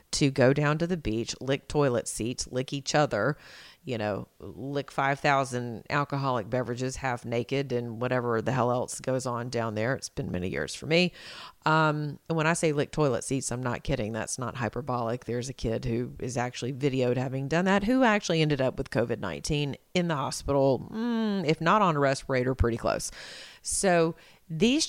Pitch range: 120-150 Hz